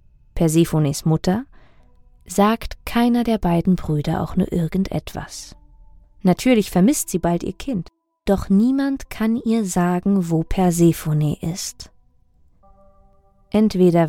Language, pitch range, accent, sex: German, 170-215 Hz, German, female